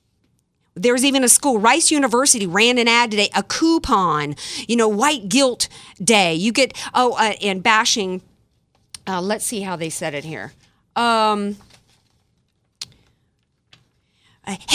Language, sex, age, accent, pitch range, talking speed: English, female, 40-59, American, 180-240 Hz, 135 wpm